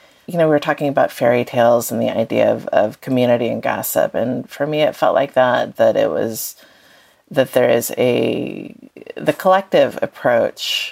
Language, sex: English, female